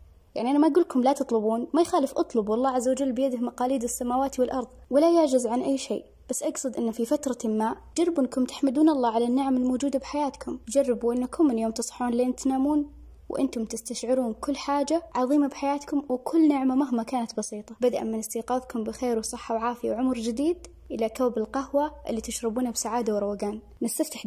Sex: female